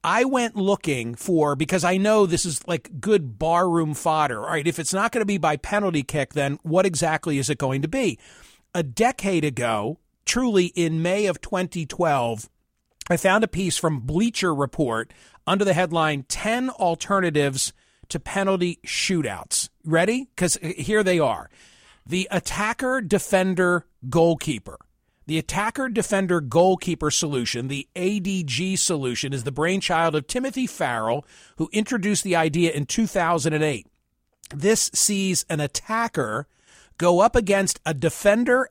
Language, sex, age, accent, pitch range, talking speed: English, male, 40-59, American, 150-200 Hz, 140 wpm